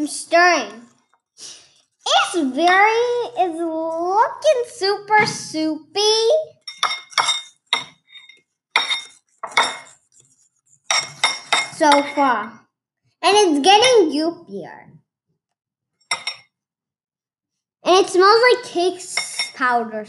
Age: 10-29